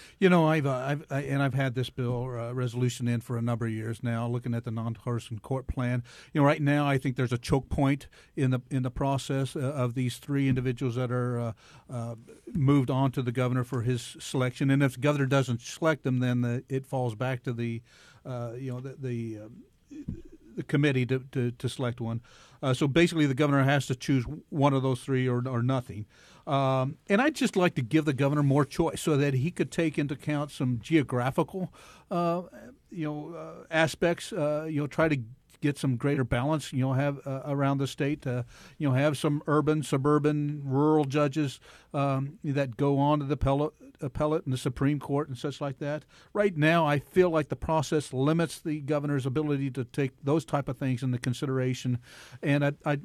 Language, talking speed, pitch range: English, 210 wpm, 130-155 Hz